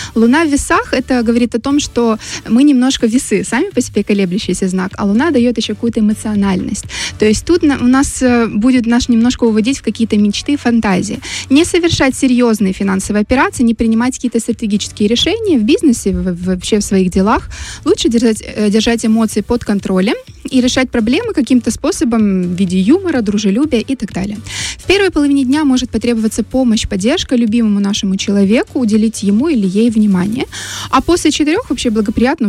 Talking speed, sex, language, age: 165 wpm, female, Russian, 20-39